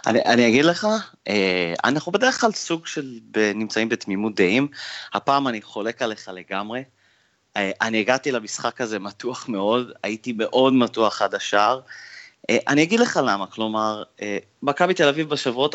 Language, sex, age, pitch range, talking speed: Hebrew, male, 30-49, 105-140 Hz, 135 wpm